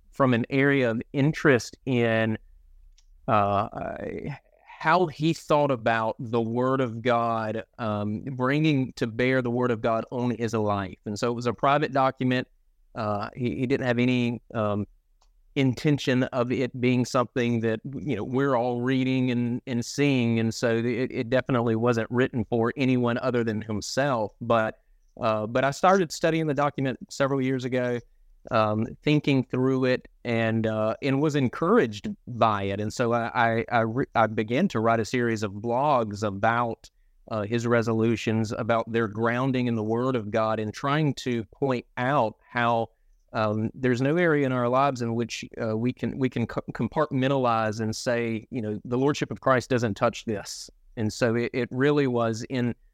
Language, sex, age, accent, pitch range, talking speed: English, male, 30-49, American, 110-130 Hz, 175 wpm